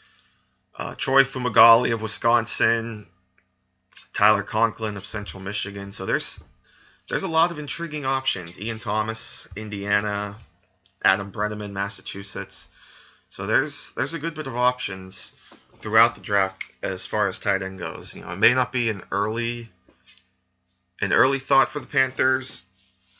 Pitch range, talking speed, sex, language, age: 90-110 Hz, 140 wpm, male, English, 30-49